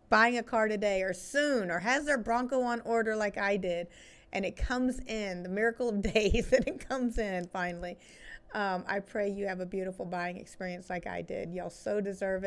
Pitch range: 185-230 Hz